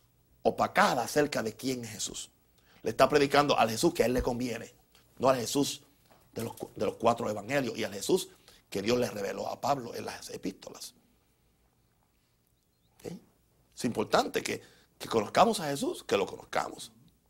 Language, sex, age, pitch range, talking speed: Spanish, male, 50-69, 100-160 Hz, 160 wpm